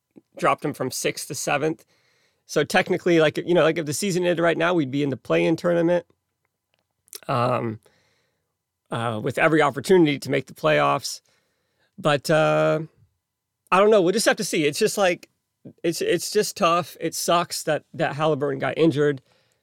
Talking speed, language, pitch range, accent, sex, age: 175 wpm, English, 130-170 Hz, American, male, 30-49